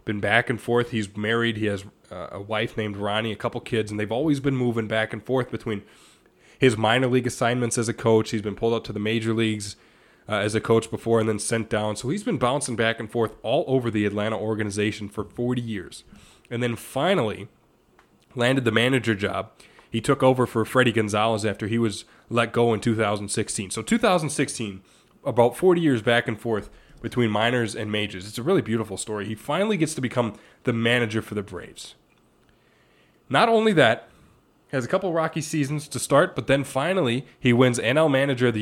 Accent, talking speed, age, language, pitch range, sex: American, 205 wpm, 20-39, English, 110-130 Hz, male